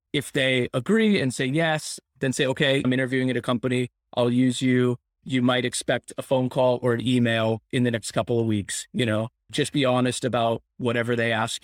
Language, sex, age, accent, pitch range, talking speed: English, male, 20-39, American, 120-155 Hz, 210 wpm